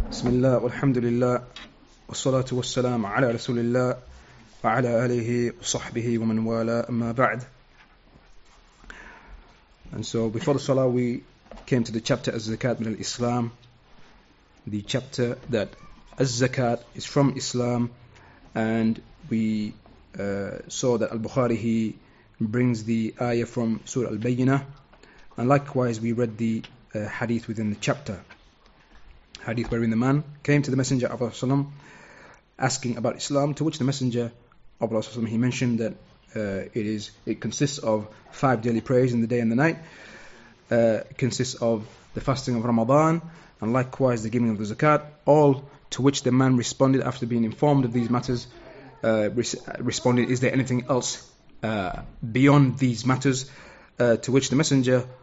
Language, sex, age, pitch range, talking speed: English, male, 30-49, 115-130 Hz, 145 wpm